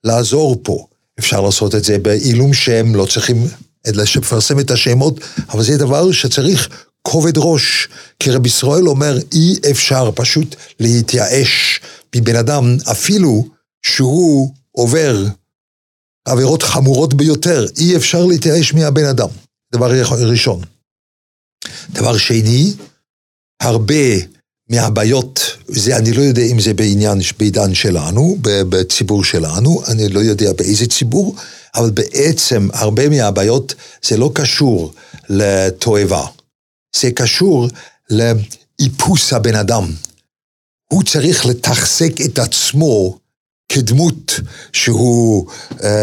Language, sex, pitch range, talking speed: Hebrew, male, 105-140 Hz, 105 wpm